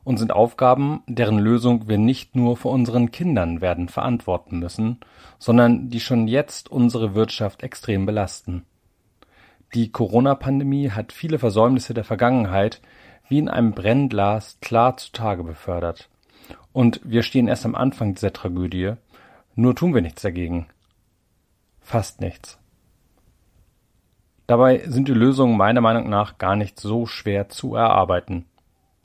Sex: male